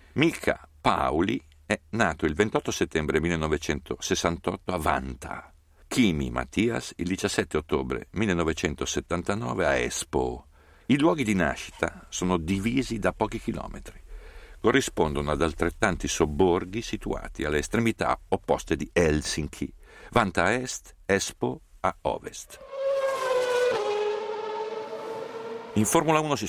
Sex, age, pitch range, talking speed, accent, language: male, 60-79, 75-110 Hz, 105 wpm, native, Italian